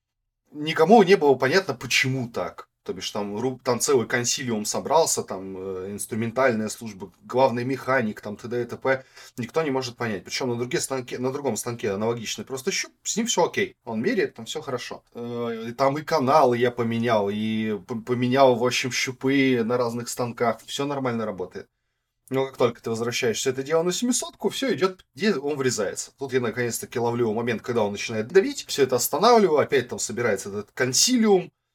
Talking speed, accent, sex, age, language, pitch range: 170 wpm, native, male, 20-39, Russian, 115-140 Hz